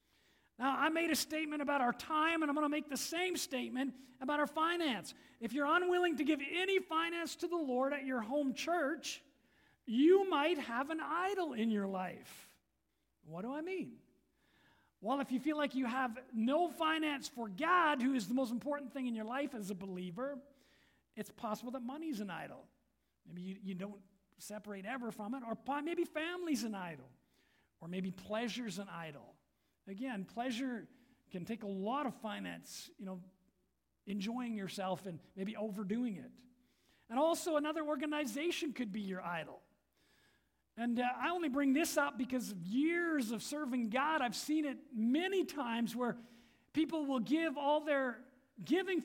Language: English